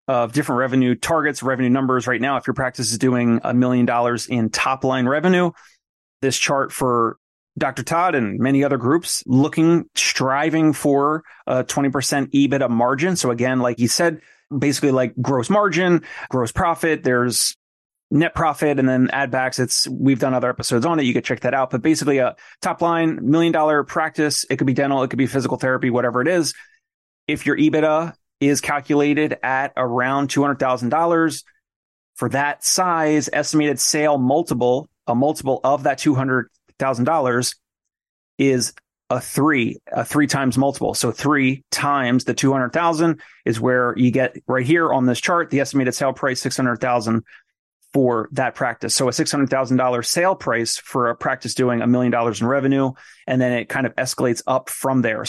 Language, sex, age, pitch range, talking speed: English, male, 30-49, 125-150 Hz, 170 wpm